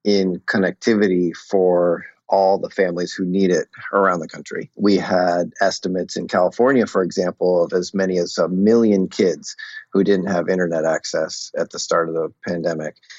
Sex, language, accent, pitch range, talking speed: male, English, American, 90-110 Hz, 170 wpm